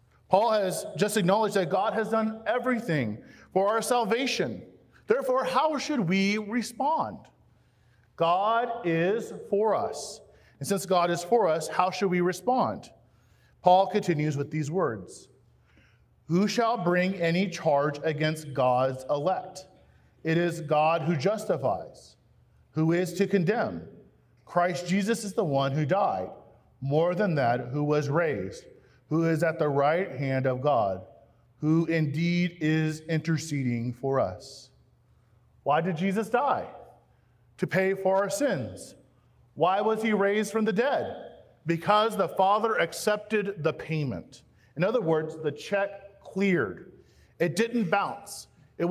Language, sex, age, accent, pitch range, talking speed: English, male, 40-59, American, 150-210 Hz, 135 wpm